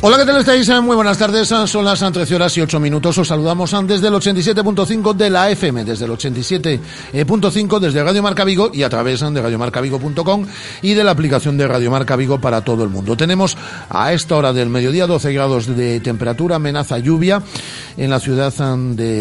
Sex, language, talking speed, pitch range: male, Spanish, 195 wpm, 125-180 Hz